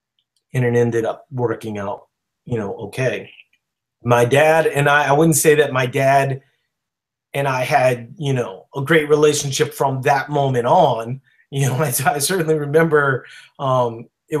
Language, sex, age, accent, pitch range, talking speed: English, male, 30-49, American, 130-170 Hz, 165 wpm